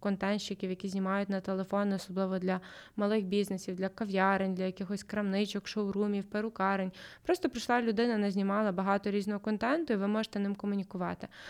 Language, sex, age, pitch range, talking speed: Ukrainian, female, 20-39, 195-220 Hz, 150 wpm